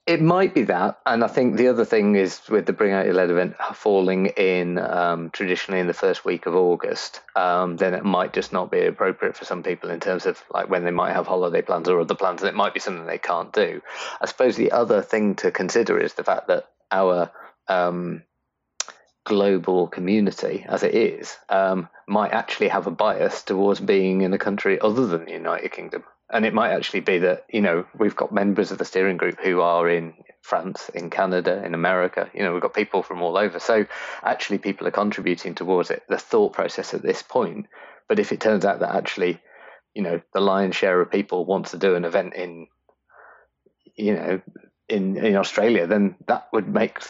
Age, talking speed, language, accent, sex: 30-49, 215 wpm, English, British, male